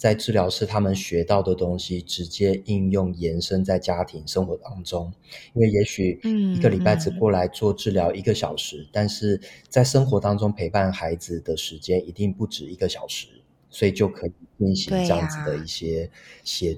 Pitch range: 90-110 Hz